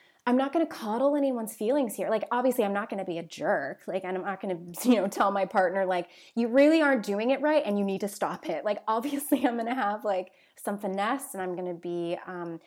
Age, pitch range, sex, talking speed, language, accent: 20-39, 185-235 Hz, female, 265 wpm, English, American